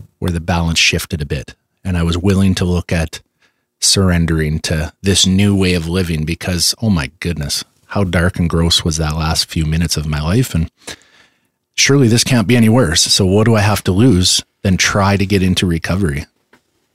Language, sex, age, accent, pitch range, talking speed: English, male, 30-49, American, 85-105 Hz, 200 wpm